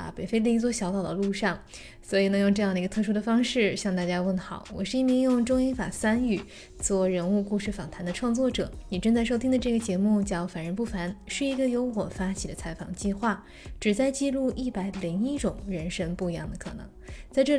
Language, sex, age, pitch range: Chinese, female, 20-39, 185-235 Hz